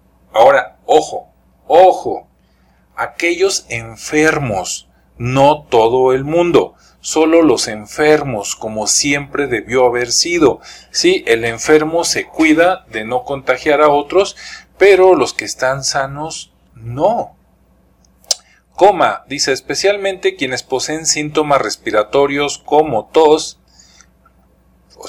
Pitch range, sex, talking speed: 125-160 Hz, male, 105 wpm